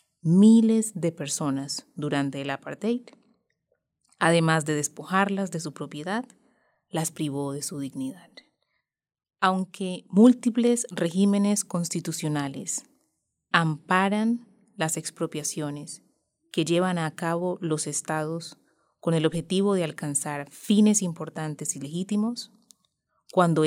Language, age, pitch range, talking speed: Spanish, 30-49, 155-195 Hz, 100 wpm